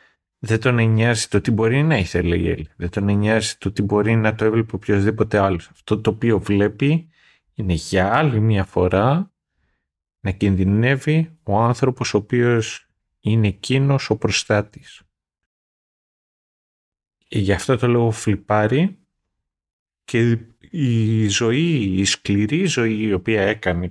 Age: 30-49